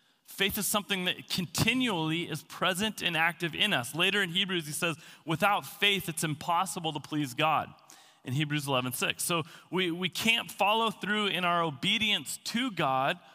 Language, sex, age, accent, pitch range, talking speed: English, male, 30-49, American, 135-175 Hz, 175 wpm